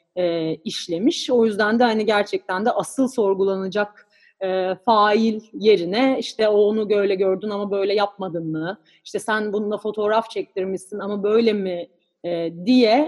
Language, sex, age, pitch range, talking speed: Turkish, female, 30-49, 195-230 Hz, 140 wpm